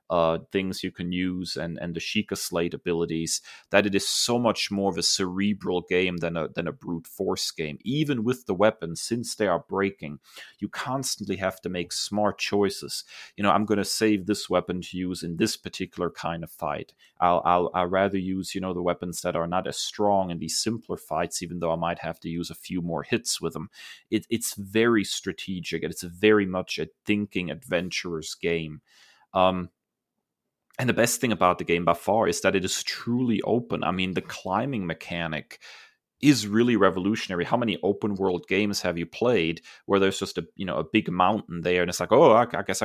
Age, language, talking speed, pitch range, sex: 30-49, English, 215 wpm, 90-110 Hz, male